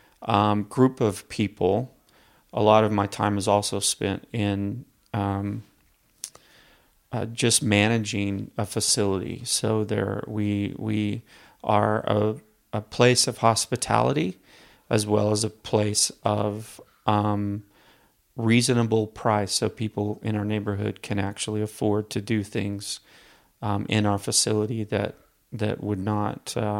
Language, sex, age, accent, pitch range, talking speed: English, male, 30-49, American, 100-110 Hz, 130 wpm